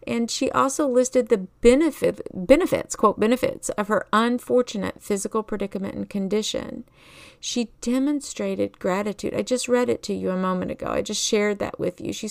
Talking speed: 165 wpm